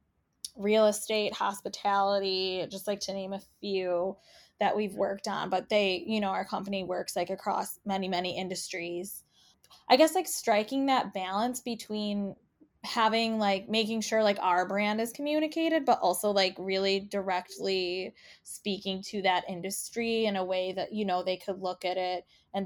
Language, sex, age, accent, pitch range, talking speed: English, female, 10-29, American, 185-225 Hz, 165 wpm